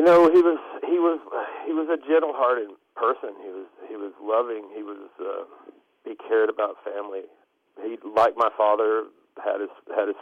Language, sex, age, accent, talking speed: English, male, 50-69, American, 180 wpm